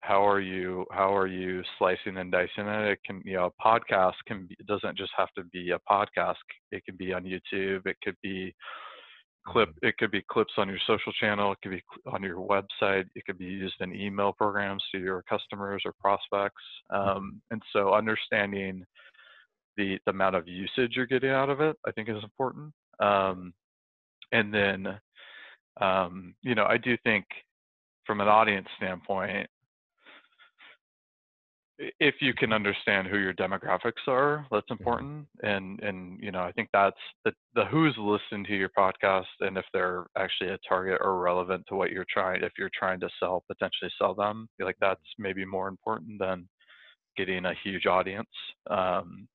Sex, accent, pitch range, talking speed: male, American, 95-110 Hz, 180 wpm